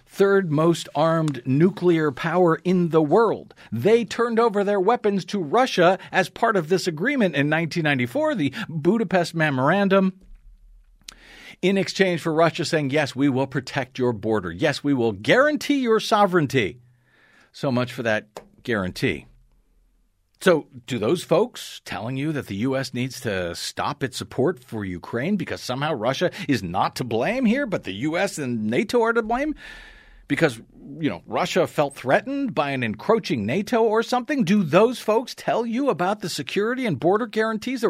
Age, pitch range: 50-69, 150-225 Hz